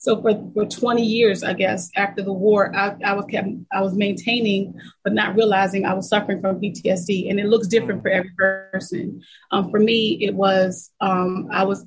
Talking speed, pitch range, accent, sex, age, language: 200 wpm, 190-210 Hz, American, female, 30-49, English